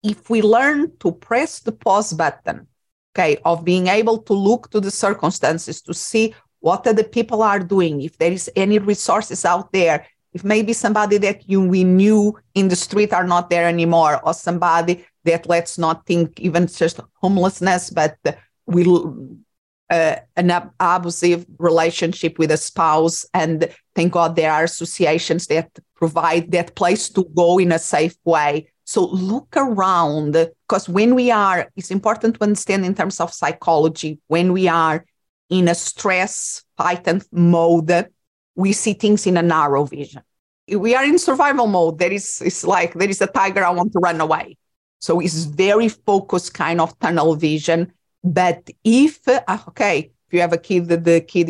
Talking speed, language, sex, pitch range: 170 wpm, English, female, 165-200 Hz